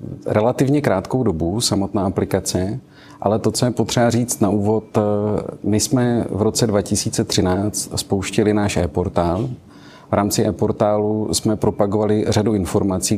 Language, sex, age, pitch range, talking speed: Czech, male, 40-59, 100-110 Hz, 130 wpm